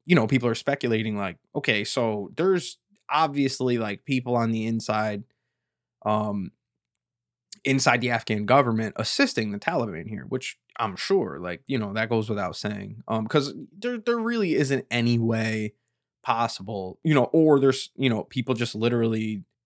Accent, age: American, 20-39